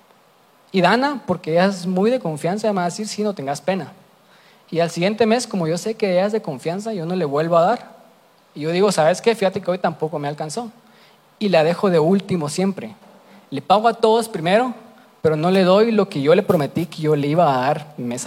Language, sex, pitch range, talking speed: Spanish, male, 160-210 Hz, 235 wpm